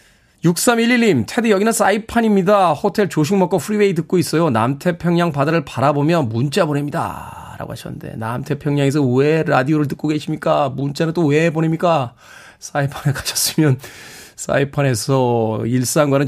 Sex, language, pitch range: male, Korean, 135-190 Hz